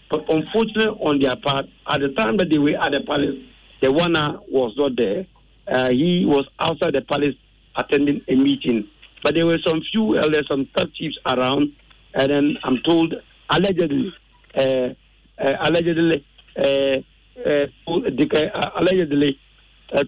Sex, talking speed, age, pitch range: male, 145 wpm, 60-79, 140-180 Hz